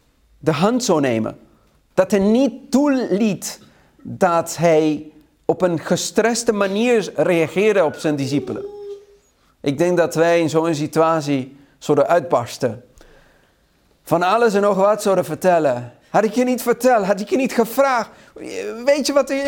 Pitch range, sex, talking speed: 150-235 Hz, male, 150 wpm